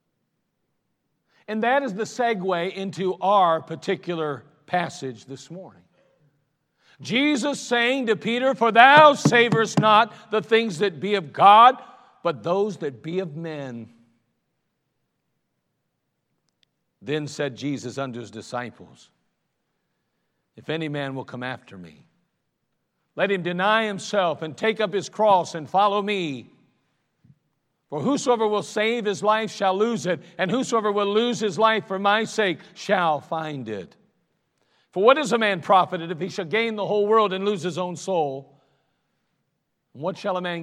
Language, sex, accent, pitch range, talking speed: English, male, American, 145-205 Hz, 145 wpm